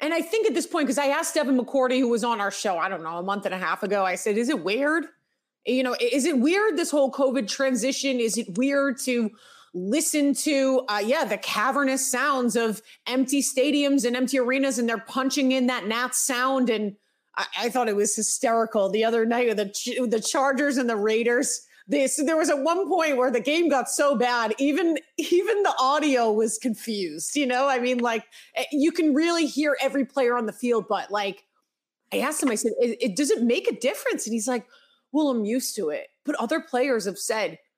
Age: 30-49